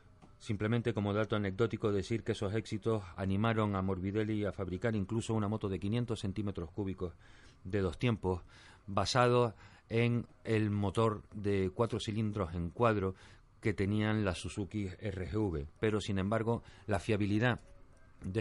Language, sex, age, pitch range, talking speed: Spanish, male, 40-59, 90-115 Hz, 140 wpm